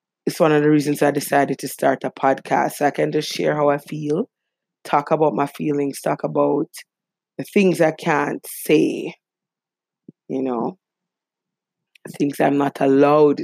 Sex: female